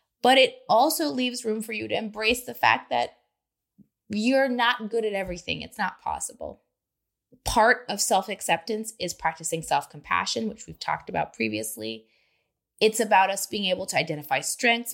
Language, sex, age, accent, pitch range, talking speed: English, female, 20-39, American, 160-230 Hz, 155 wpm